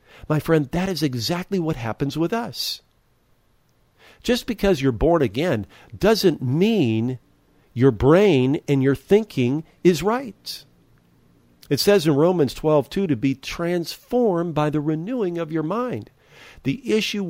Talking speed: 140 wpm